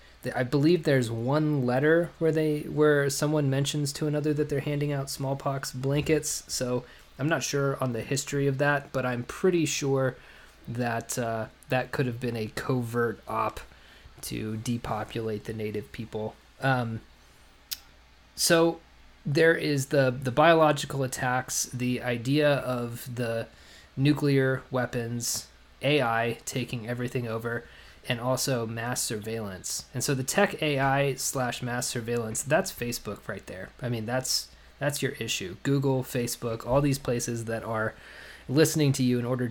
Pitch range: 120-145 Hz